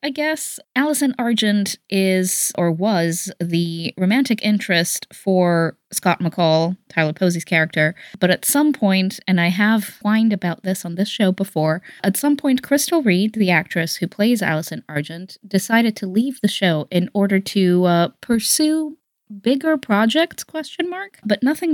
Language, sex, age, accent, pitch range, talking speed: English, female, 20-39, American, 175-230 Hz, 155 wpm